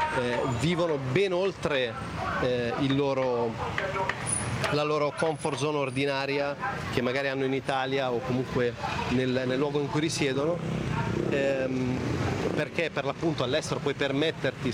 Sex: male